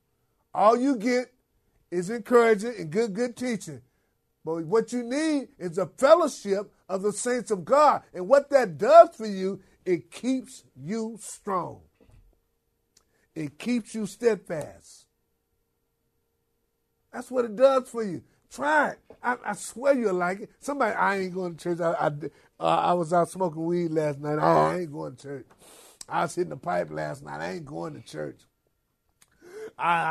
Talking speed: 165 wpm